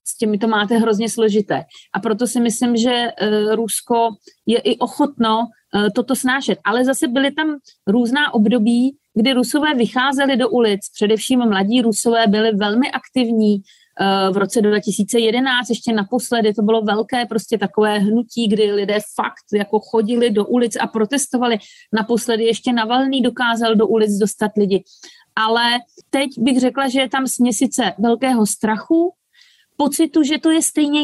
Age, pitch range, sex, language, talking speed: 40-59, 200-245 Hz, female, Slovak, 150 wpm